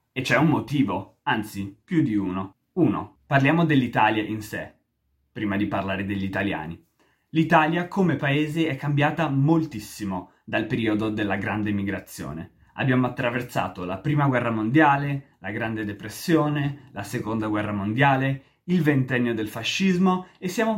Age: 20-39